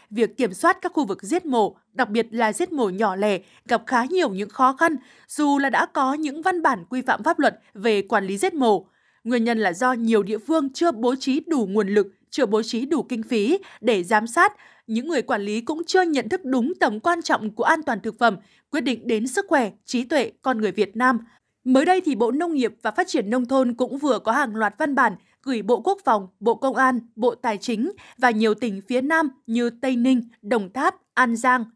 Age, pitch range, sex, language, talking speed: 20-39, 225-285 Hz, female, Vietnamese, 240 wpm